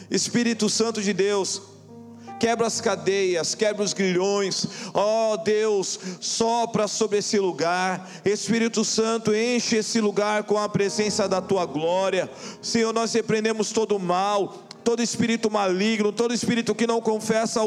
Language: Portuguese